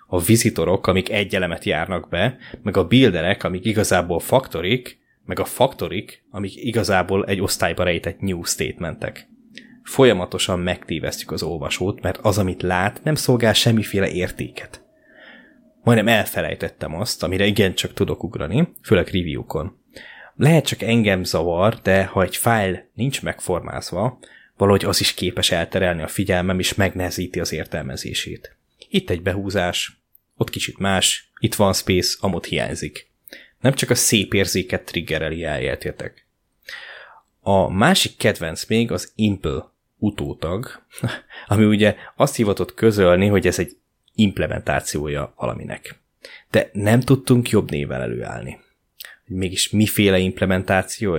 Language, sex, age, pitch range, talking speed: Hungarian, male, 20-39, 90-110 Hz, 130 wpm